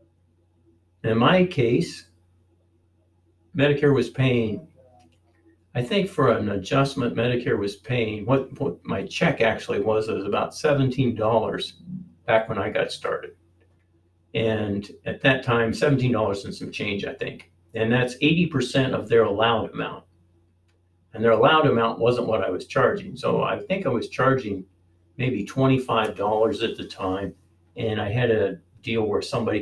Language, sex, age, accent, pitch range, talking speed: English, male, 50-69, American, 85-125 Hz, 150 wpm